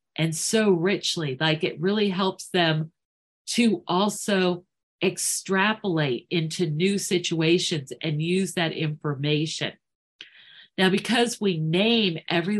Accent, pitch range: American, 165-220 Hz